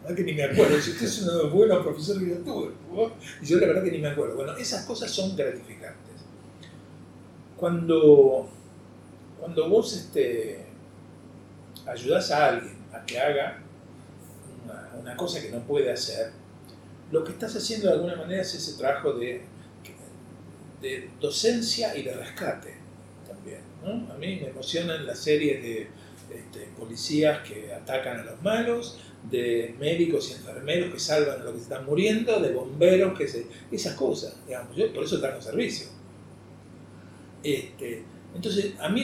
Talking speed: 155 wpm